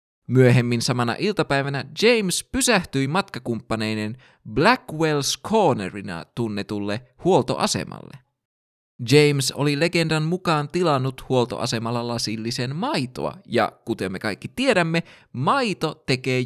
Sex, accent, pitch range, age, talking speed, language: male, native, 115-175 Hz, 20-39, 90 wpm, Finnish